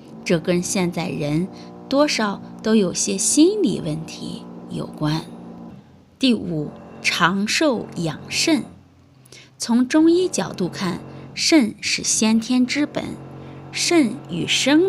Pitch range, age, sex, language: 165-255 Hz, 20-39, female, Chinese